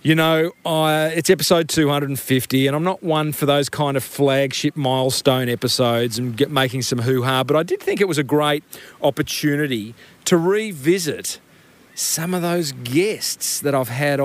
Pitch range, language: 130-185 Hz, English